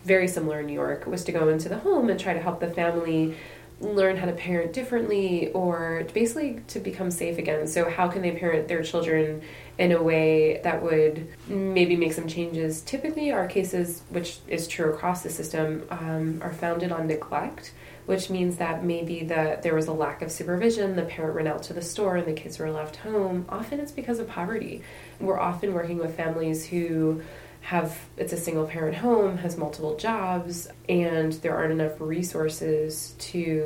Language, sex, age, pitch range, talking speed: English, female, 20-39, 155-180 Hz, 190 wpm